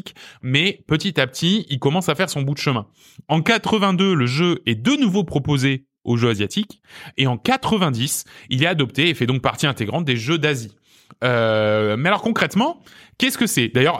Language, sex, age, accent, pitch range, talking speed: French, male, 20-39, French, 115-170 Hz, 195 wpm